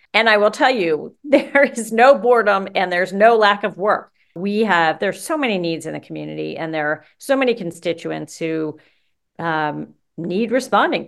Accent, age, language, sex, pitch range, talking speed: American, 40-59, English, female, 170-230 Hz, 185 wpm